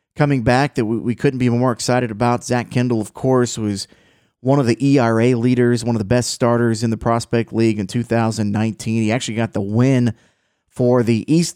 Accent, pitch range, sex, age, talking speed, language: American, 110-125 Hz, male, 30-49, 195 wpm, English